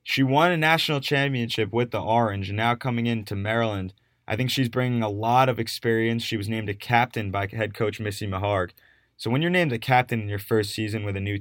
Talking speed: 230 wpm